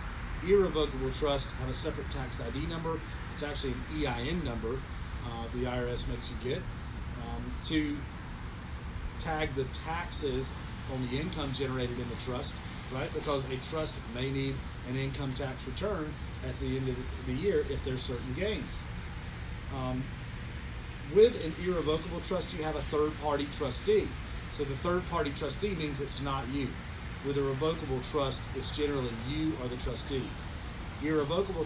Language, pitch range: English, 100-150 Hz